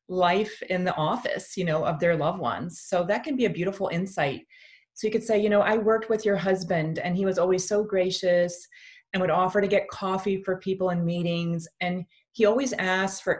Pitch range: 175-210 Hz